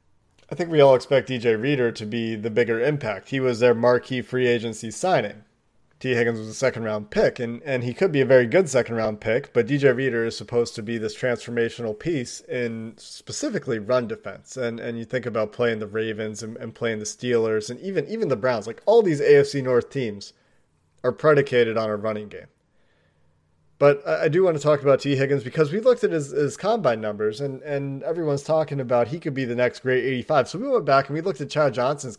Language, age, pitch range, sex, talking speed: English, 30-49, 115-145 Hz, male, 225 wpm